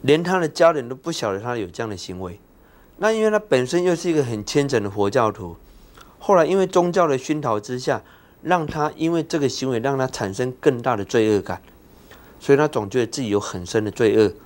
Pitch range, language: 105-145 Hz, Chinese